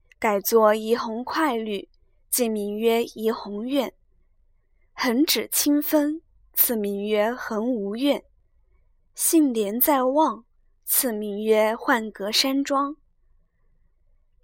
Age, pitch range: 20-39, 210-275 Hz